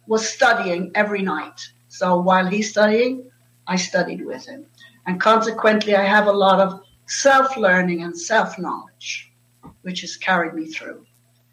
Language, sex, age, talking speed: English, female, 60-79, 140 wpm